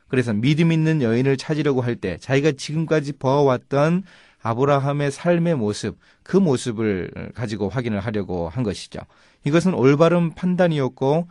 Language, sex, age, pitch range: Korean, male, 30-49, 105-150 Hz